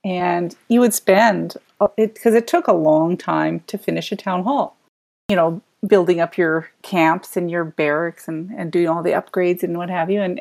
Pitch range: 160-195 Hz